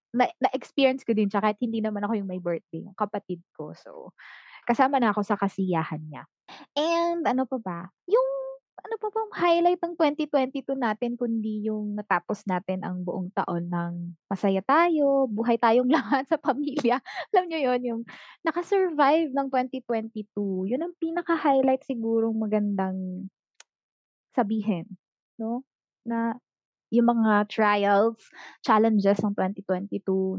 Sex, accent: female, native